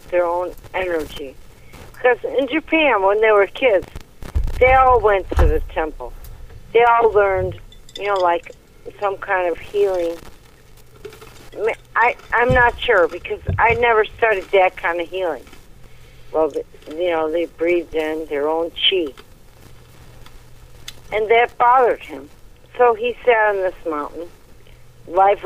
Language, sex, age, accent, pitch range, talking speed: English, female, 50-69, American, 165-230 Hz, 145 wpm